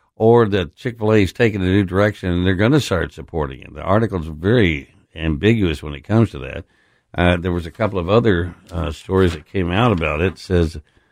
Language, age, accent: English, 60-79, American